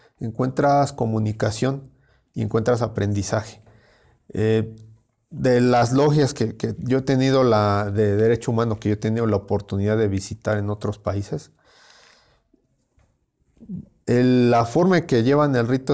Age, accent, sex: 40-59, Mexican, male